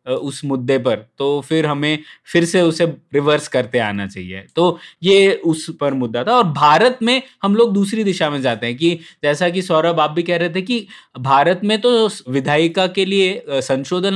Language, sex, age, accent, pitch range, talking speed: Hindi, male, 20-39, native, 145-195 Hz, 195 wpm